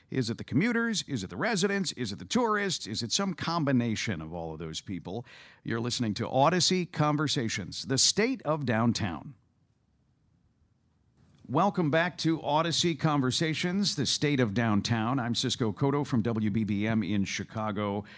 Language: English